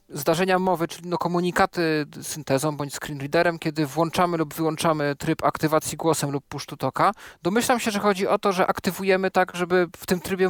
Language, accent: Polish, native